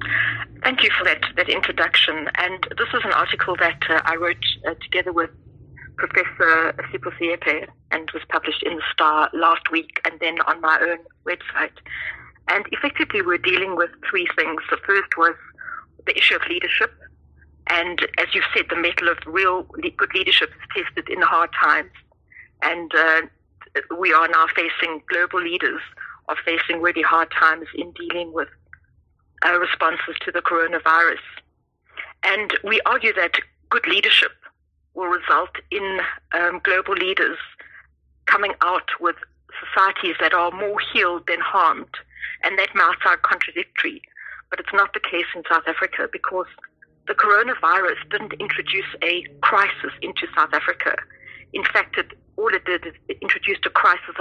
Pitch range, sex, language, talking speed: 165-205 Hz, female, English, 155 wpm